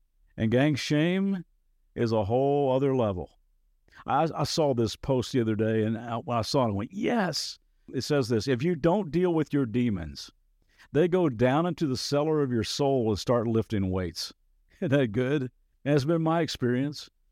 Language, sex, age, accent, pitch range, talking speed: English, male, 50-69, American, 105-135 Hz, 190 wpm